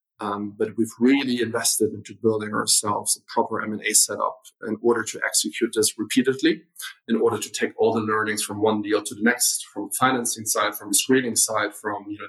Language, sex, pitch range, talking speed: English, male, 110-135 Hz, 210 wpm